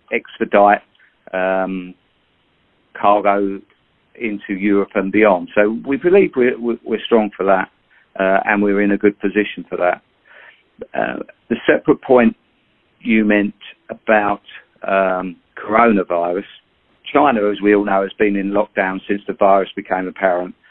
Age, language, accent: 50-69, English, British